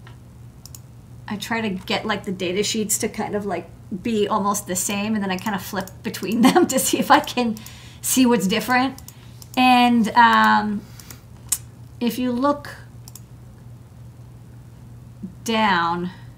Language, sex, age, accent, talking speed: English, female, 40-59, American, 140 wpm